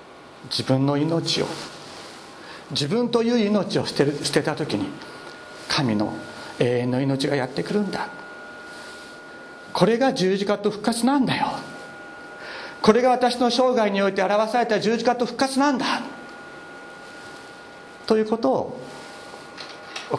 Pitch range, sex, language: 150-235 Hz, male, Japanese